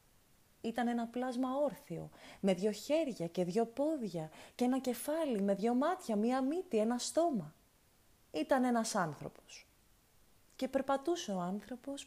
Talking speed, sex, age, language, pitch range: 135 wpm, female, 30-49, Greek, 195-240 Hz